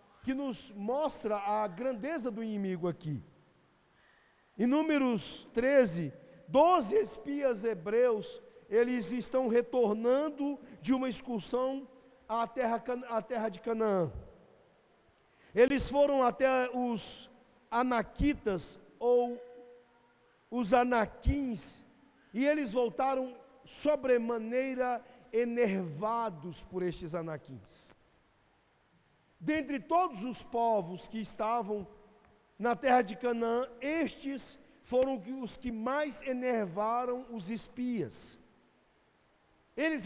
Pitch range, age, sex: 220-255 Hz, 50-69, male